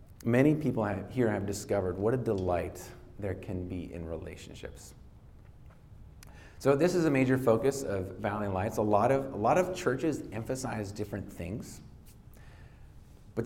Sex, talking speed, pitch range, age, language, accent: male, 150 wpm, 90-120 Hz, 30-49, English, American